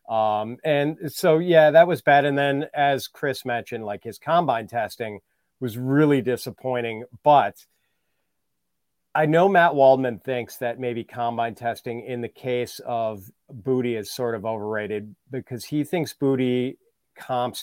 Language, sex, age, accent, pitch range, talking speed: English, male, 40-59, American, 115-140 Hz, 145 wpm